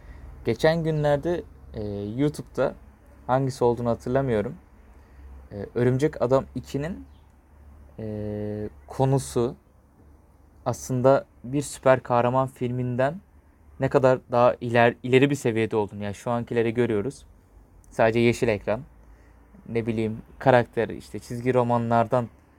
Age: 30-49